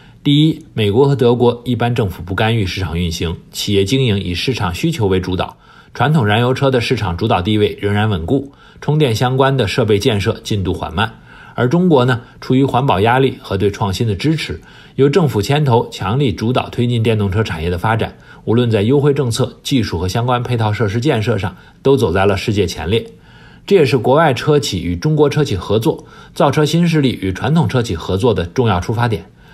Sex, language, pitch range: male, English, 100-140 Hz